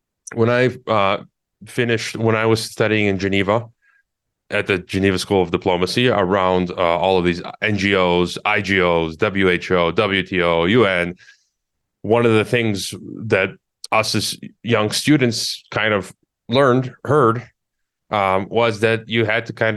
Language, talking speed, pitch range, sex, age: English, 140 wpm, 95-125 Hz, male, 30-49